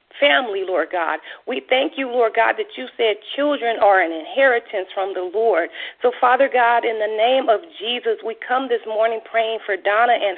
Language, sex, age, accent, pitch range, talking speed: English, female, 40-59, American, 205-255 Hz, 195 wpm